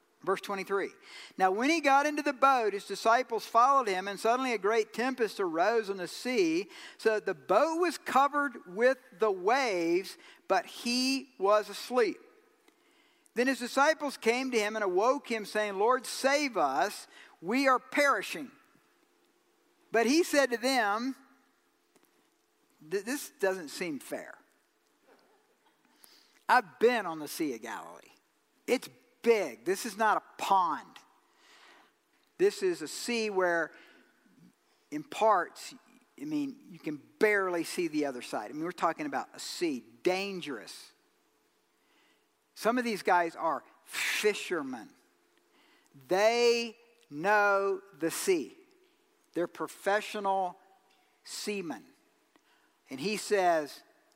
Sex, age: male, 50-69